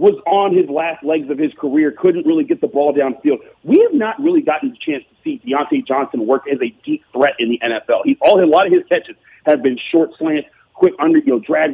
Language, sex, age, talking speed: English, male, 40-59, 250 wpm